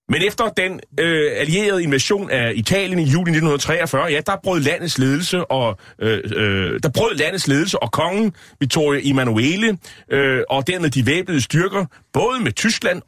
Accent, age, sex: native, 30-49, male